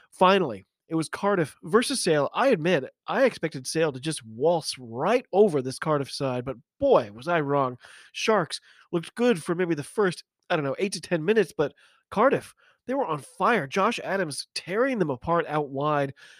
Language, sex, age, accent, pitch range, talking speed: English, male, 30-49, American, 155-210 Hz, 185 wpm